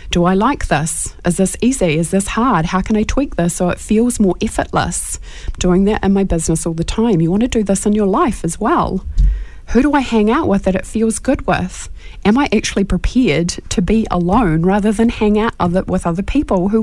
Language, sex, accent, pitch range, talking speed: English, female, Australian, 165-215 Hz, 230 wpm